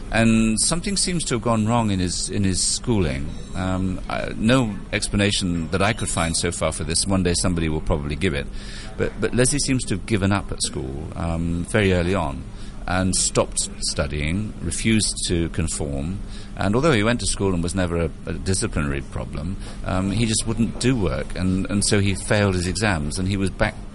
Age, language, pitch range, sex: 40-59, English, 85-105 Hz, male